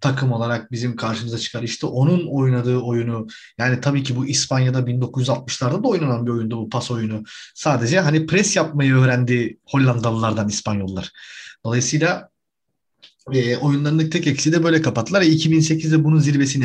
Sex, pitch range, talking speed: male, 125-150 Hz, 145 wpm